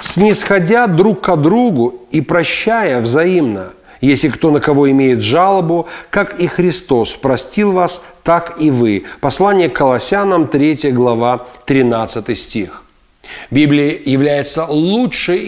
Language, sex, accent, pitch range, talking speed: Russian, male, native, 140-185 Hz, 120 wpm